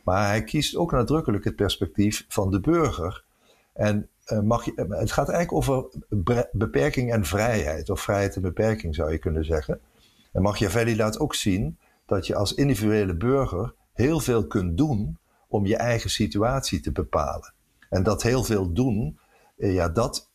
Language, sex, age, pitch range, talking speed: Dutch, male, 50-69, 90-115 Hz, 155 wpm